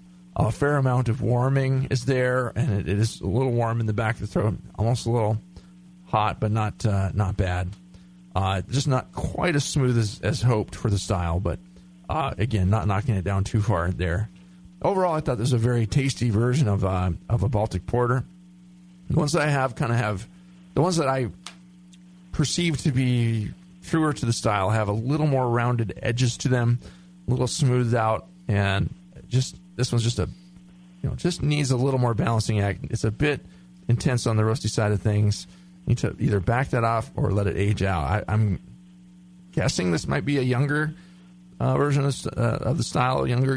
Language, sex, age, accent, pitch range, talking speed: English, male, 40-59, American, 105-135 Hz, 210 wpm